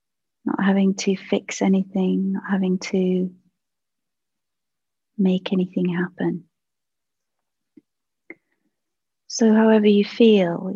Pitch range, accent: 180-200 Hz, British